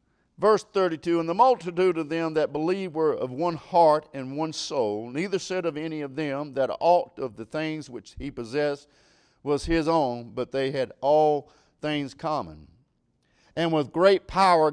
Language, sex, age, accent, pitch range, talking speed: English, male, 50-69, American, 140-170 Hz, 175 wpm